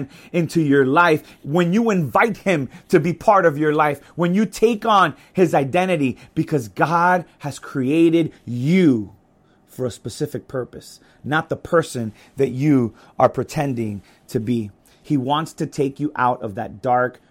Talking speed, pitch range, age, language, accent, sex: 160 wpm, 115-145 Hz, 30-49, English, American, male